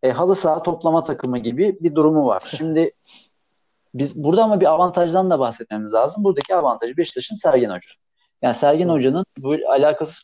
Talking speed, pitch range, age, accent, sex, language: 165 wpm, 125-190 Hz, 50-69, native, male, Turkish